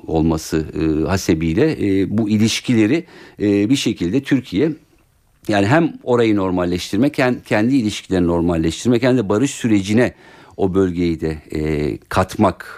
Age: 50-69